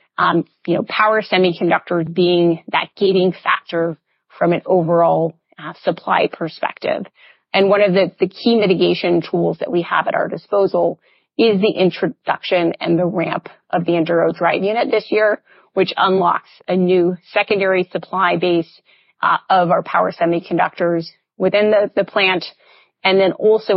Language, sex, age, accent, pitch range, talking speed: English, female, 30-49, American, 170-195 Hz, 155 wpm